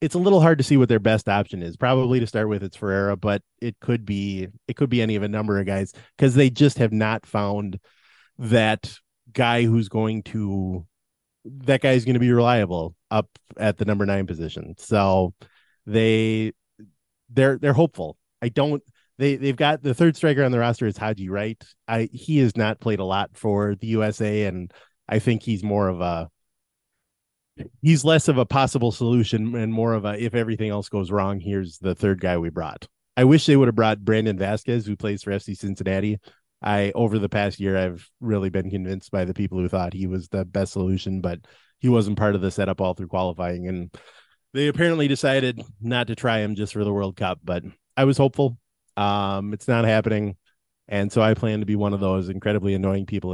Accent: American